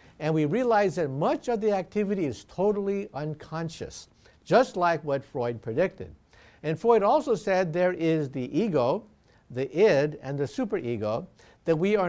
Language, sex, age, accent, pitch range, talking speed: English, male, 50-69, American, 140-210 Hz, 160 wpm